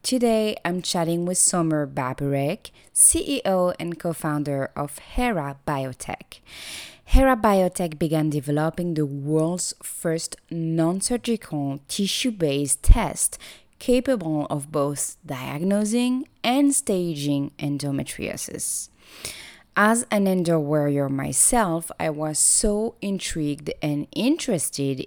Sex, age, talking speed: female, 20-39, 95 wpm